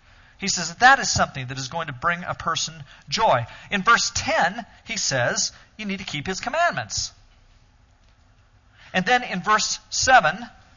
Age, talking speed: 40-59, 165 wpm